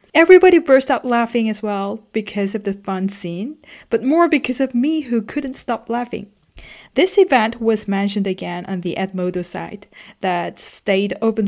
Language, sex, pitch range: Korean, female, 195-275 Hz